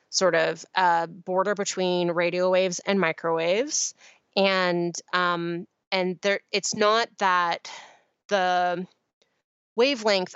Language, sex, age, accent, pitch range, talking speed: English, female, 20-39, American, 180-220 Hz, 110 wpm